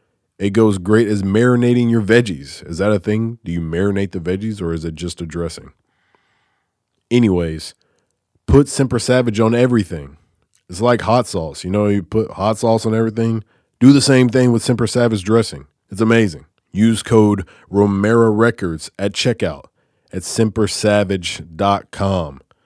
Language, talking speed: English, 150 wpm